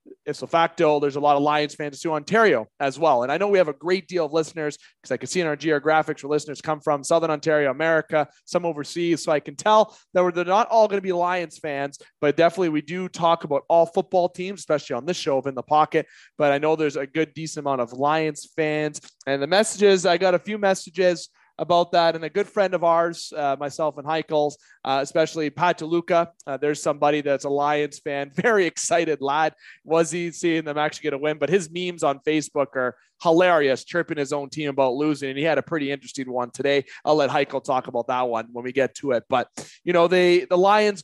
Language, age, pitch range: English, 30-49, 145-175 Hz